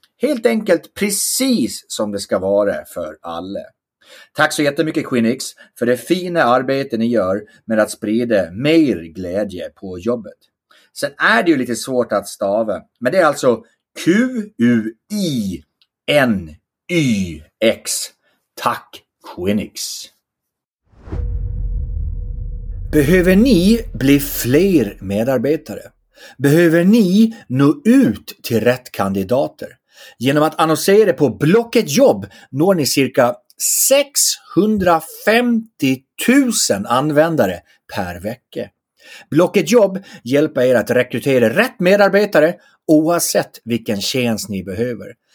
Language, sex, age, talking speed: English, male, 30-49, 105 wpm